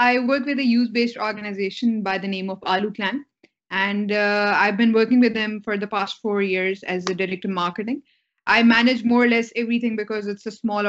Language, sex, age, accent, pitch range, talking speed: English, female, 20-39, Indian, 195-230 Hz, 215 wpm